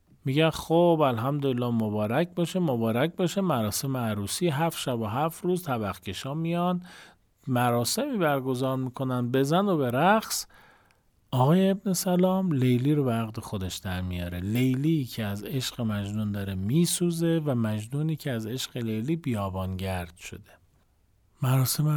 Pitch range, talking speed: 100-155 Hz, 130 wpm